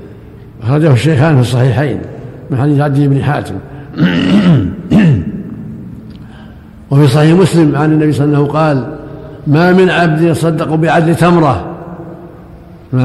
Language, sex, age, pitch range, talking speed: Arabic, male, 60-79, 145-165 Hz, 120 wpm